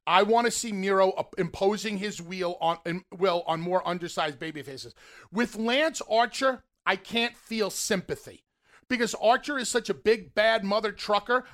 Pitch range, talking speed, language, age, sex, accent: 160-210 Hz, 160 wpm, English, 40-59, male, American